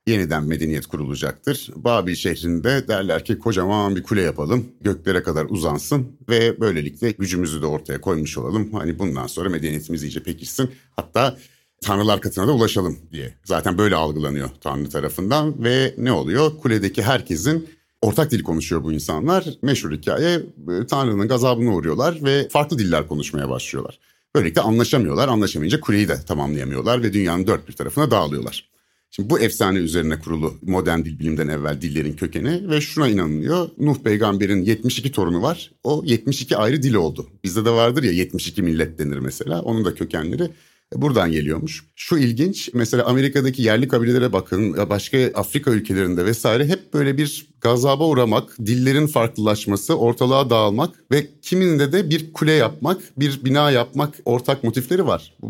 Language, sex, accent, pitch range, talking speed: Turkish, male, native, 85-135 Hz, 150 wpm